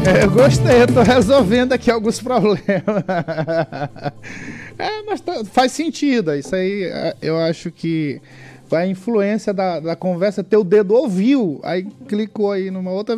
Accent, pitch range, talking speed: Brazilian, 155-200 Hz, 135 wpm